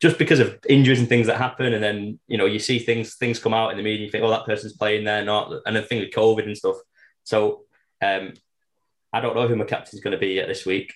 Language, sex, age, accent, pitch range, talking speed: English, male, 20-39, British, 95-125 Hz, 275 wpm